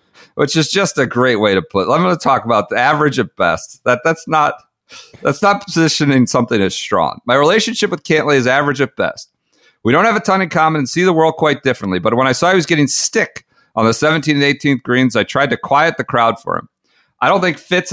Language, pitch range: English, 120-155 Hz